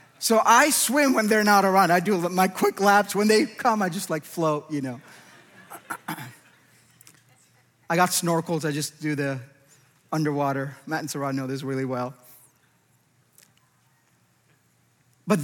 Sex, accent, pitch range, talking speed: male, American, 190-280 Hz, 145 wpm